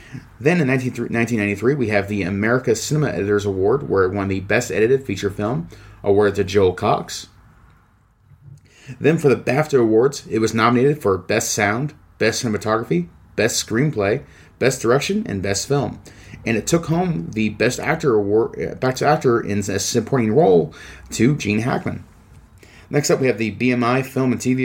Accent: American